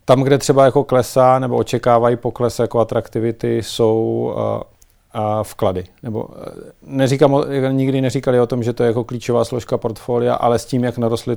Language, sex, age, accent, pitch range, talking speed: Czech, male, 40-59, native, 110-130 Hz, 170 wpm